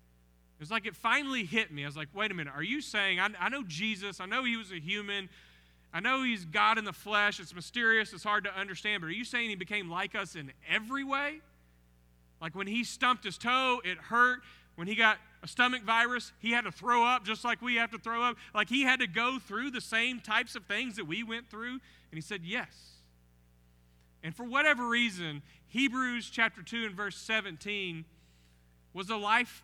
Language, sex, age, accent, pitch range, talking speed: English, male, 40-59, American, 160-225 Hz, 220 wpm